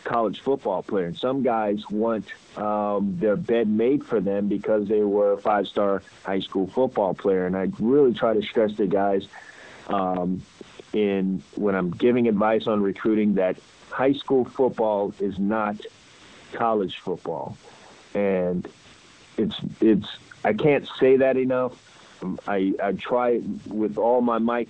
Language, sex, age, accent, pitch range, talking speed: English, male, 50-69, American, 105-130 Hz, 150 wpm